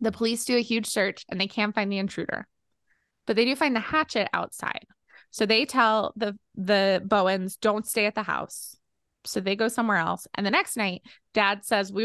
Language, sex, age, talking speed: English, female, 20-39, 210 wpm